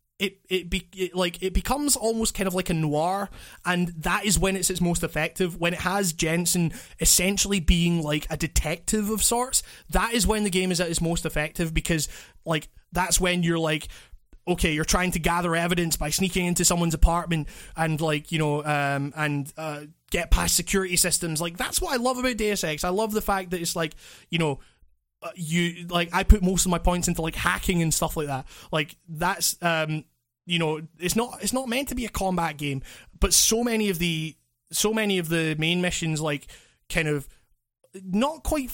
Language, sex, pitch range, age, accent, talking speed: English, male, 160-190 Hz, 20-39, British, 205 wpm